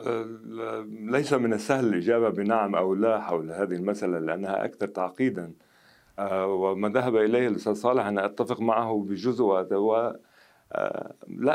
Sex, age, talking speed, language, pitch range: male, 50-69, 120 wpm, Arabic, 90-115 Hz